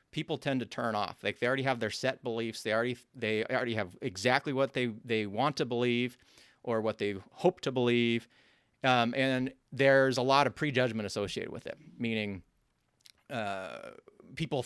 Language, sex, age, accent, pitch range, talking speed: English, male, 30-49, American, 115-135 Hz, 175 wpm